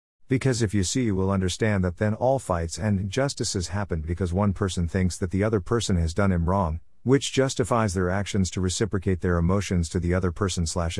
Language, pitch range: Hindi, 90-115 Hz